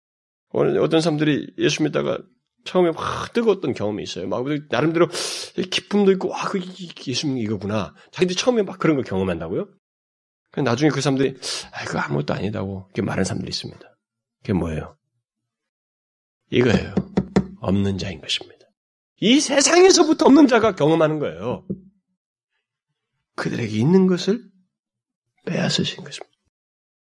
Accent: native